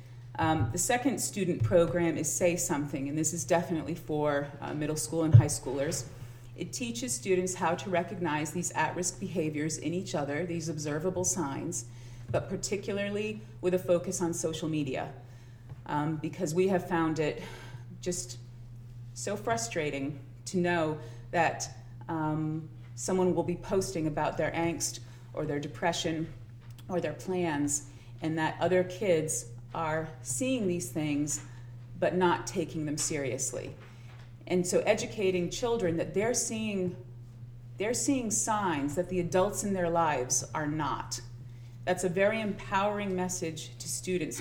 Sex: female